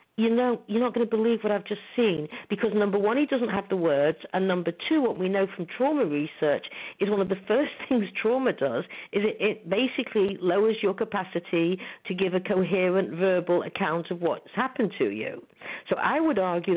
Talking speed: 215 wpm